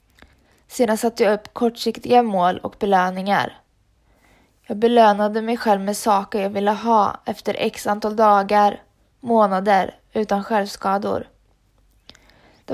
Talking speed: 120 wpm